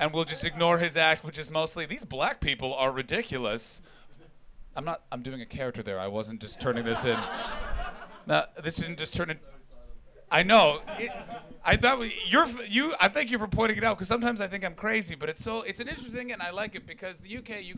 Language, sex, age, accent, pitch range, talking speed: English, male, 30-49, American, 180-250 Hz, 235 wpm